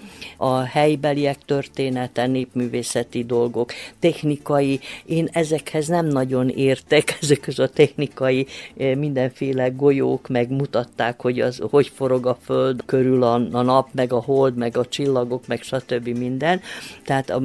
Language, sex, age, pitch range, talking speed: Hungarian, female, 50-69, 115-140 Hz, 125 wpm